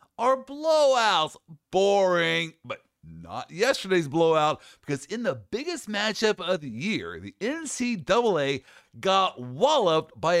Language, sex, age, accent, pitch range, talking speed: English, male, 50-69, American, 140-215 Hz, 115 wpm